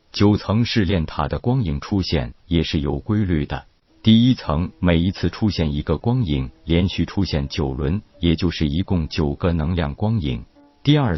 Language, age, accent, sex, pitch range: Chinese, 50-69, native, male, 75-100 Hz